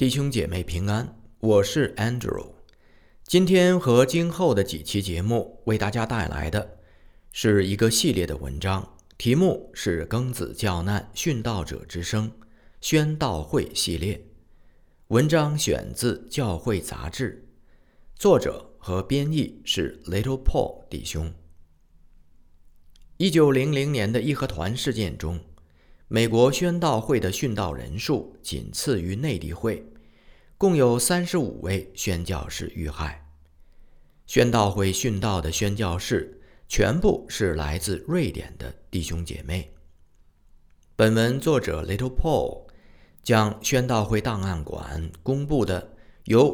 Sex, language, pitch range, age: male, Chinese, 80-115 Hz, 50-69